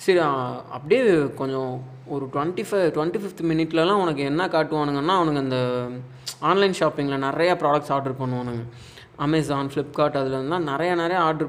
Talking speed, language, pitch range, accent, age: 130 wpm, Tamil, 135-165 Hz, native, 20-39